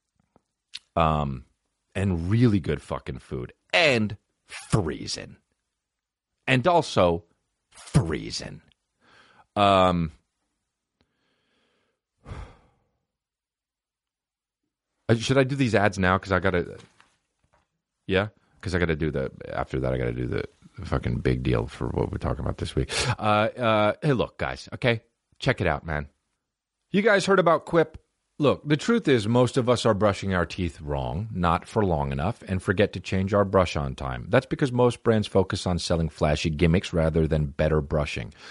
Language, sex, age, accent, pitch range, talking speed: English, male, 40-59, American, 80-120 Hz, 155 wpm